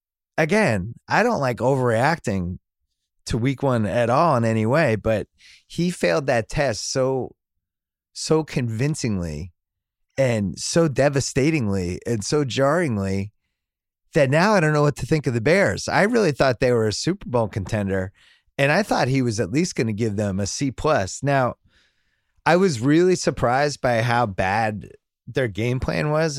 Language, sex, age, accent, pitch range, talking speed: English, male, 30-49, American, 100-140 Hz, 165 wpm